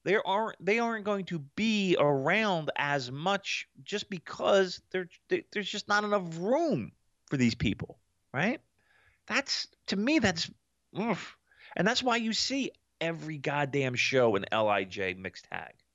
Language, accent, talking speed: English, American, 150 wpm